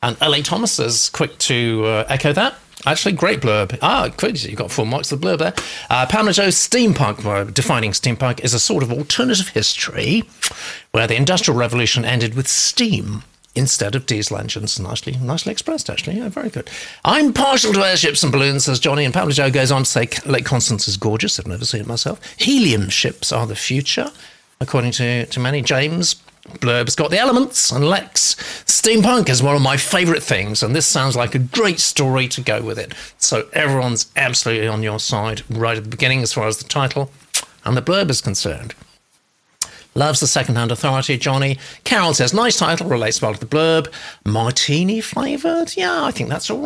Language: English